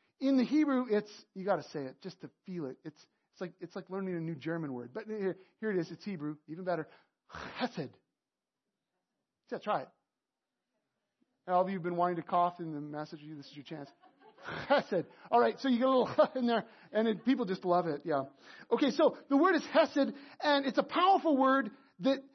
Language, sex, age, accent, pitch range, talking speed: English, male, 40-59, American, 200-285 Hz, 225 wpm